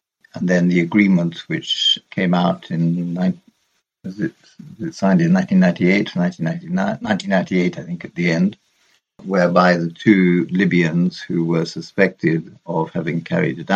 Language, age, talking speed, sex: English, 60-79, 170 wpm, male